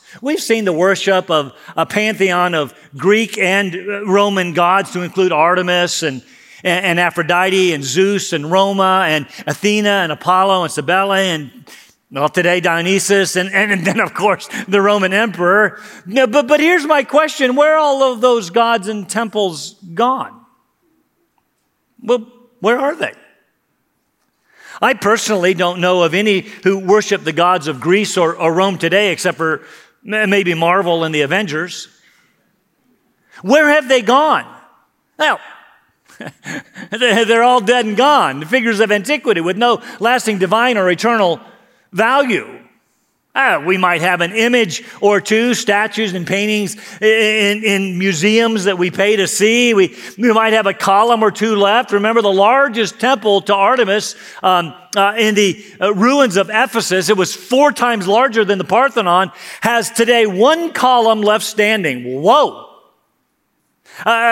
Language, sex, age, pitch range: English, male, 40-59, 185-230 Hz